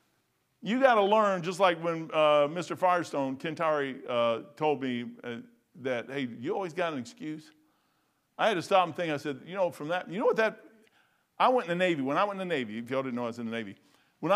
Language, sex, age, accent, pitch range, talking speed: English, male, 50-69, American, 135-205 Hz, 250 wpm